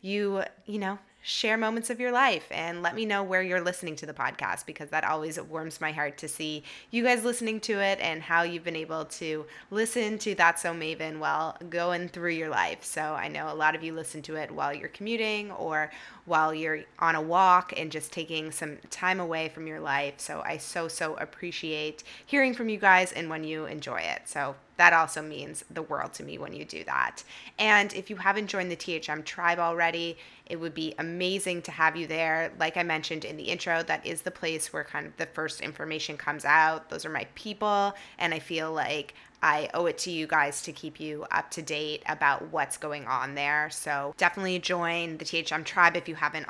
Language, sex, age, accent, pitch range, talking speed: English, female, 20-39, American, 155-185 Hz, 220 wpm